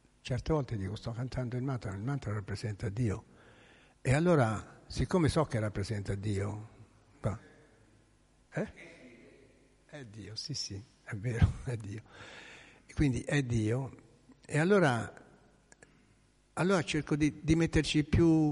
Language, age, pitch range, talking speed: Italian, 60-79, 110-145 Hz, 125 wpm